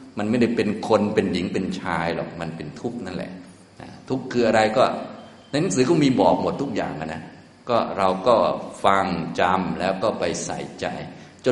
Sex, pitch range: male, 85-105 Hz